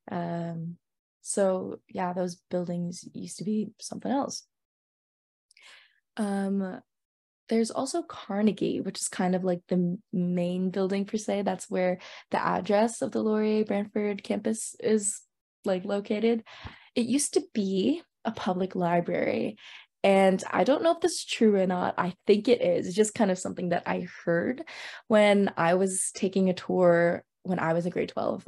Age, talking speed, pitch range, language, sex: 20-39, 160 wpm, 175-215 Hz, English, female